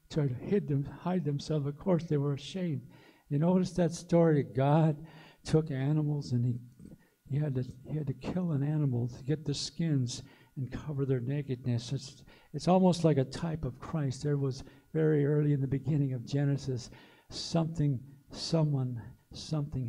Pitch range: 140-165 Hz